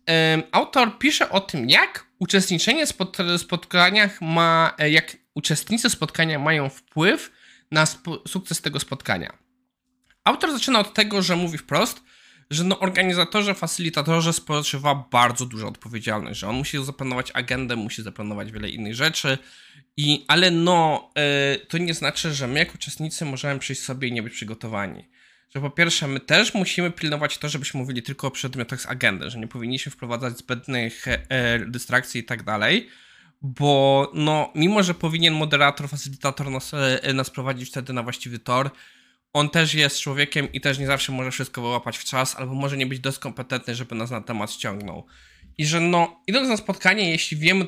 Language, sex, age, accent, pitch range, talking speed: Polish, male, 20-39, native, 130-165 Hz, 170 wpm